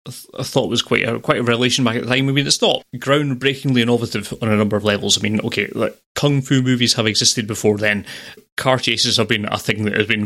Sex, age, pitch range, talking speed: male, 30-49, 110-130 Hz, 270 wpm